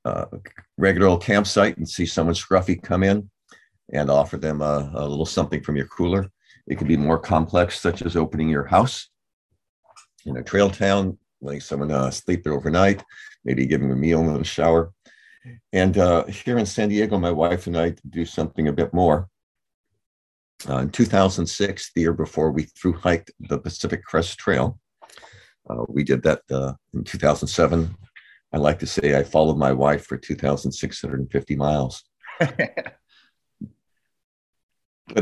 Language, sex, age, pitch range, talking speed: English, male, 50-69, 75-95 Hz, 165 wpm